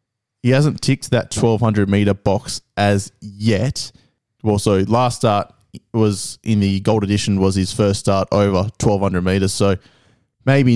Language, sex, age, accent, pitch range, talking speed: English, male, 20-39, Australian, 100-120 Hz, 140 wpm